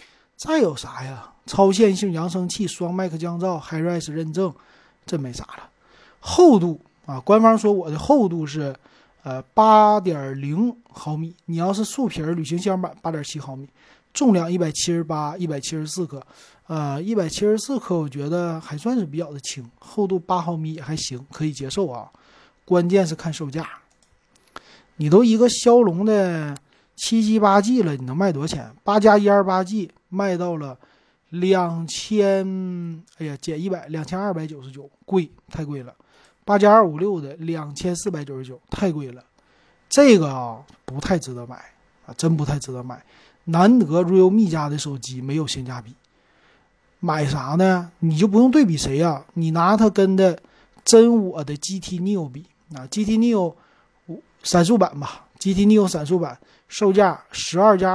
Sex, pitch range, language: male, 150-200 Hz, Chinese